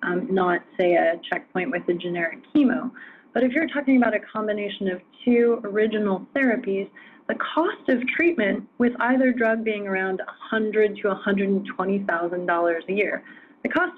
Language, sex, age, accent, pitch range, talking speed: English, female, 30-49, American, 185-250 Hz, 150 wpm